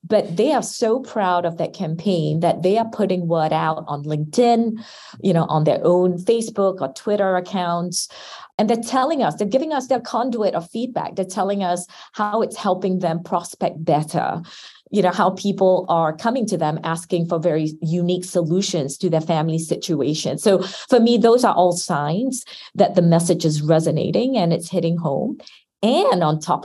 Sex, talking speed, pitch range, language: female, 180 wpm, 165-220 Hz, English